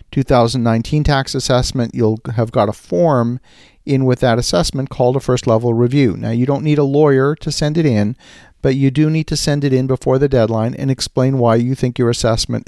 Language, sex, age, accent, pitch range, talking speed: English, male, 50-69, American, 115-140 Hz, 215 wpm